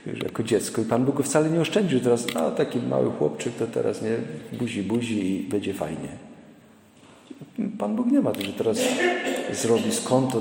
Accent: native